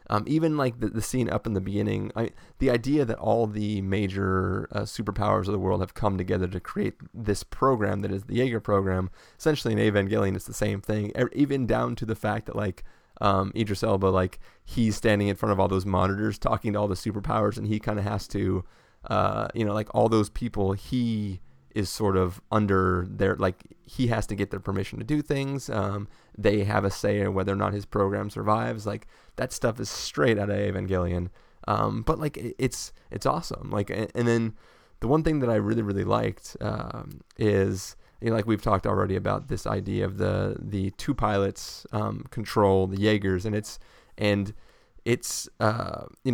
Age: 30-49